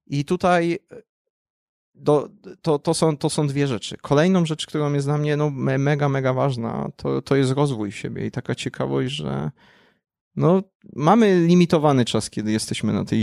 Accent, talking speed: native, 170 wpm